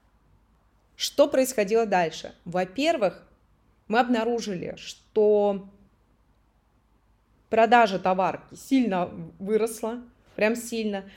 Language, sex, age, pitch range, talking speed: Russian, female, 20-39, 185-250 Hz, 70 wpm